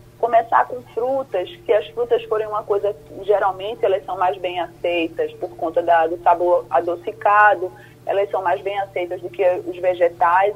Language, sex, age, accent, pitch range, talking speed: Portuguese, female, 20-39, Brazilian, 175-215 Hz, 170 wpm